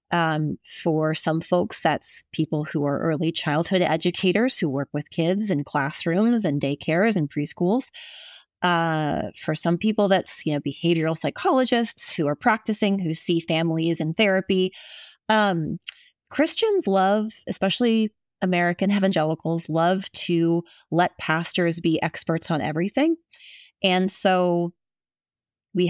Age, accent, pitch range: 30-49, American, 165-215 Hz